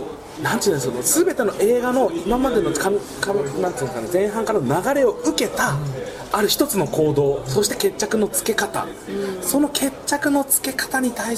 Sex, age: male, 30-49